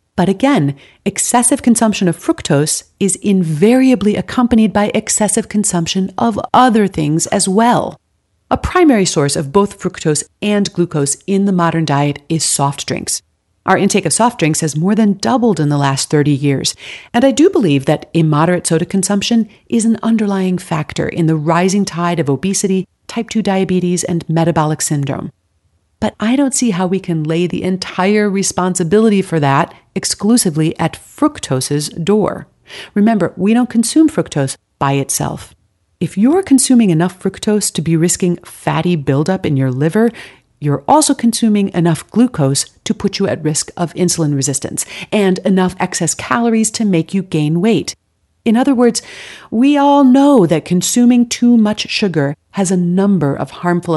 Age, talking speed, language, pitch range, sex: 40-59, 160 wpm, English, 160-220 Hz, female